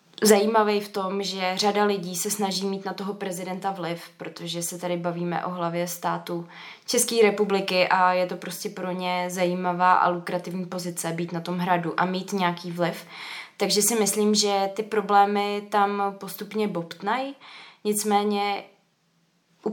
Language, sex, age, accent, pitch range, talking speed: Czech, female, 20-39, native, 185-210 Hz, 155 wpm